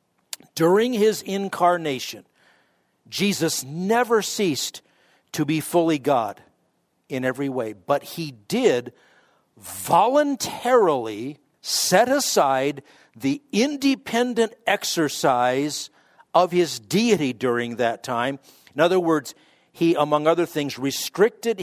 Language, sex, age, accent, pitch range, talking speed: English, male, 50-69, American, 125-195 Hz, 100 wpm